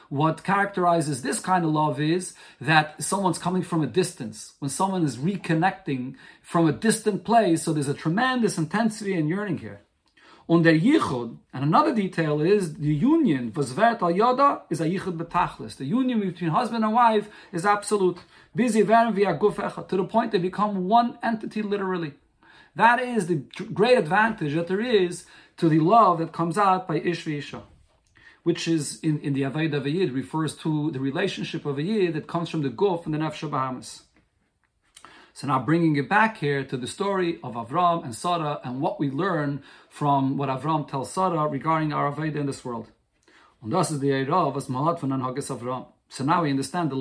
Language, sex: English, male